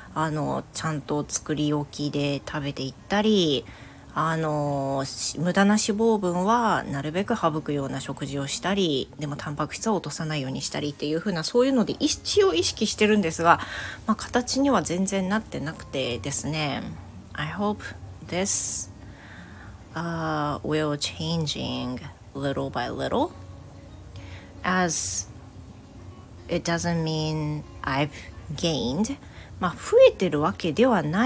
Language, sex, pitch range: Japanese, female, 140-190 Hz